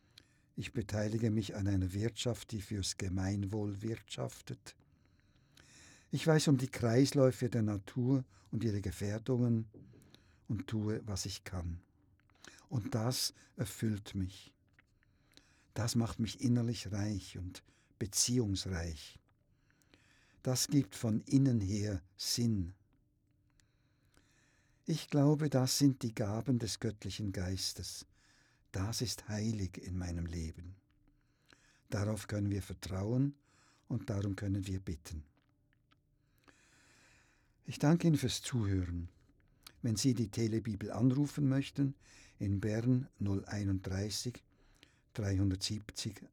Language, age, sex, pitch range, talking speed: German, 60-79, male, 95-125 Hz, 105 wpm